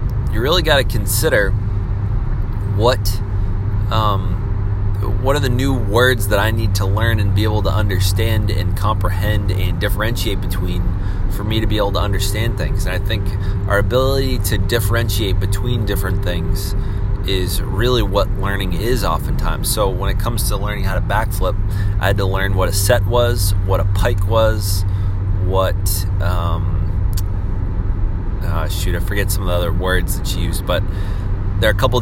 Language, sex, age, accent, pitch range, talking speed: English, male, 30-49, American, 95-105 Hz, 170 wpm